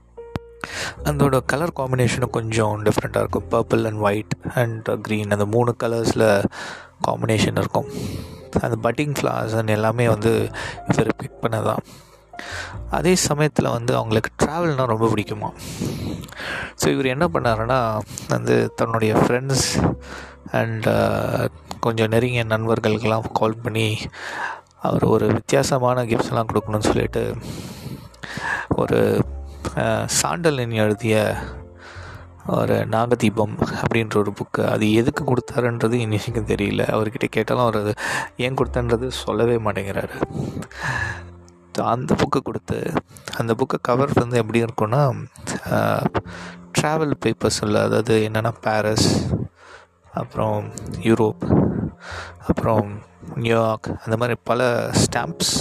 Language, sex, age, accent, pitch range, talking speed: Tamil, male, 20-39, native, 105-125 Hz, 100 wpm